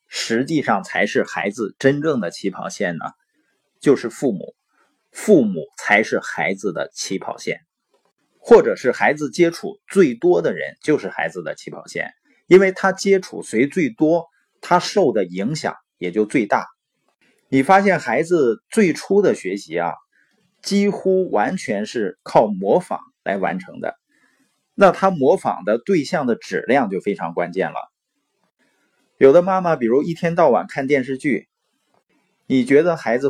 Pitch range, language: 145-245 Hz, Chinese